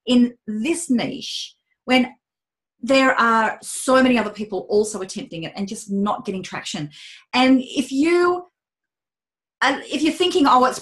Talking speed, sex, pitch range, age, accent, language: 155 wpm, female, 205-265 Hz, 30-49, Australian, English